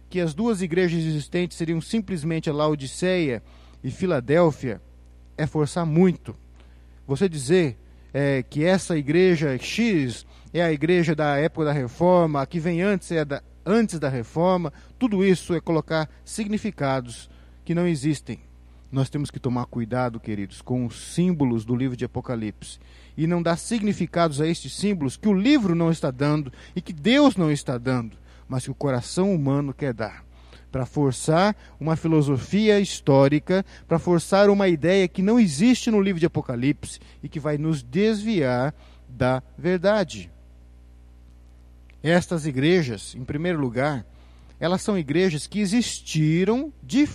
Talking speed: 150 wpm